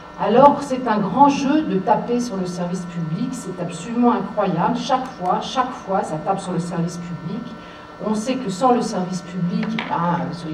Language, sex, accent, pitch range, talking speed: French, female, French, 170-235 Hz, 180 wpm